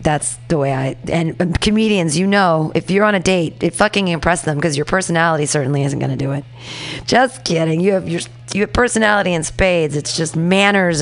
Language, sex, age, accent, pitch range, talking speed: English, female, 30-49, American, 150-205 Hz, 210 wpm